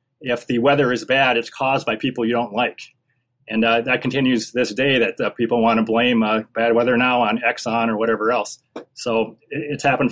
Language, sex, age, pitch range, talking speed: English, male, 30-49, 120-150 Hz, 215 wpm